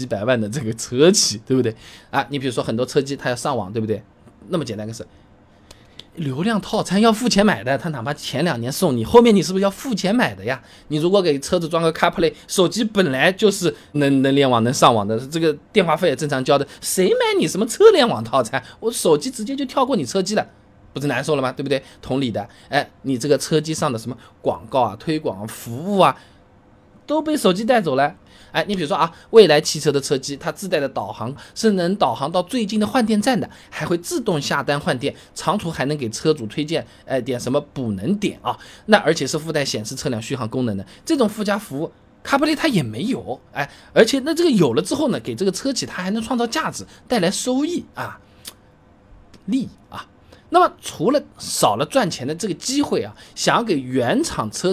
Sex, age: male, 20-39